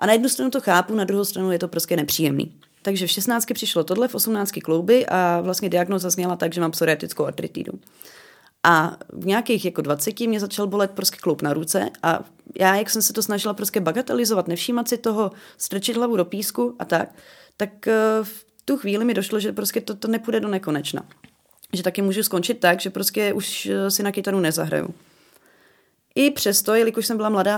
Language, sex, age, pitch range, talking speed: Czech, female, 30-49, 180-215 Hz, 200 wpm